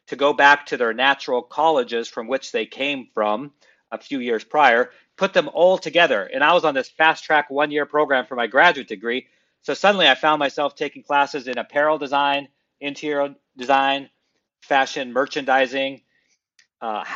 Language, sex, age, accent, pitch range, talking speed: English, male, 40-59, American, 140-170 Hz, 170 wpm